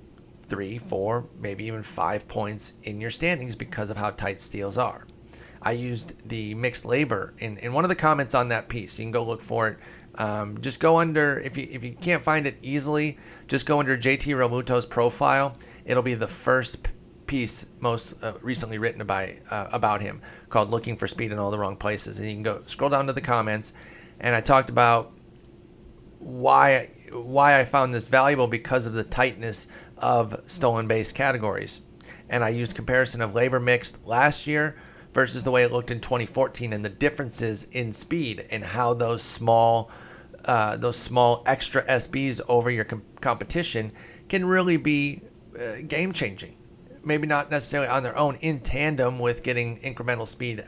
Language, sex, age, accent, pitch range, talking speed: English, male, 30-49, American, 115-140 Hz, 180 wpm